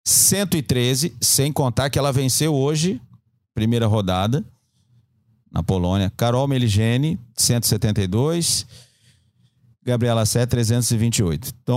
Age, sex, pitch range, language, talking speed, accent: 50-69, male, 110-140 Hz, Portuguese, 85 wpm, Brazilian